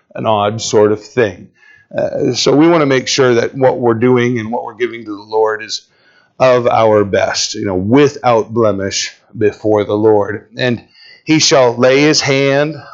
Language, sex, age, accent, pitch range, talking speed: English, male, 40-59, American, 110-135 Hz, 185 wpm